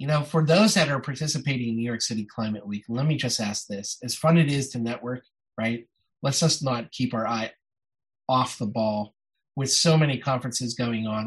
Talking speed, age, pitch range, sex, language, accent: 215 wpm, 30-49, 110-135 Hz, male, English, American